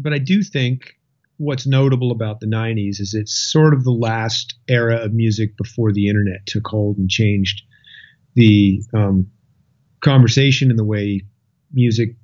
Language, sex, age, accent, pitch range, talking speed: English, male, 40-59, American, 110-140 Hz, 155 wpm